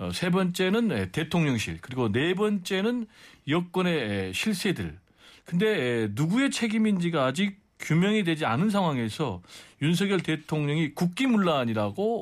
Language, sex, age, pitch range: Korean, male, 40-59, 140-210 Hz